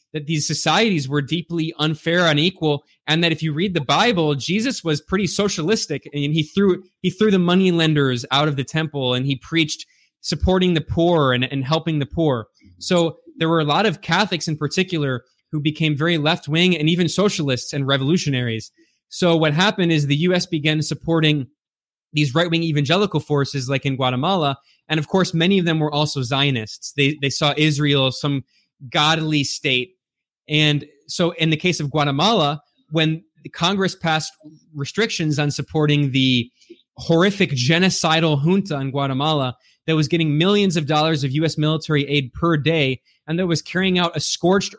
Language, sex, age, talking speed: English, male, 20-39, 170 wpm